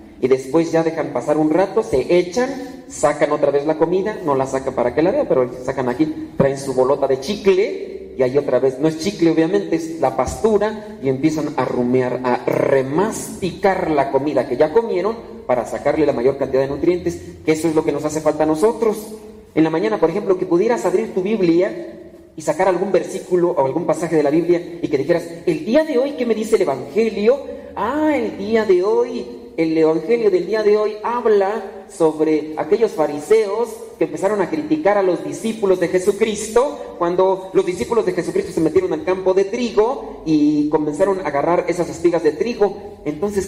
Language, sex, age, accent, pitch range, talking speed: Spanish, male, 40-59, Mexican, 150-220 Hz, 200 wpm